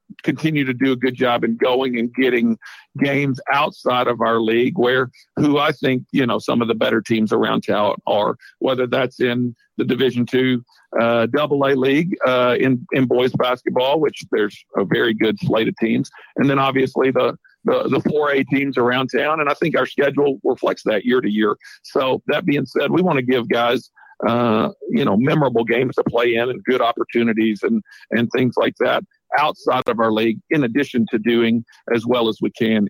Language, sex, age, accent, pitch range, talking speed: English, male, 50-69, American, 115-135 Hz, 200 wpm